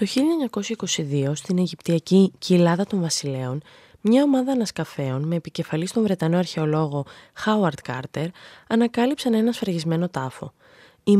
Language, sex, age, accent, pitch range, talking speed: Greek, female, 20-39, native, 155-215 Hz, 120 wpm